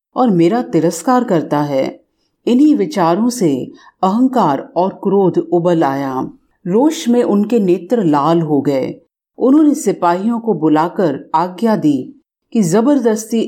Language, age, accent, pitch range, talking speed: Hindi, 40-59, native, 165-235 Hz, 125 wpm